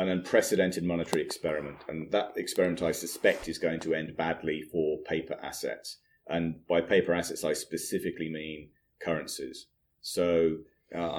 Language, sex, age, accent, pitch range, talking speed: English, male, 30-49, British, 85-100 Hz, 145 wpm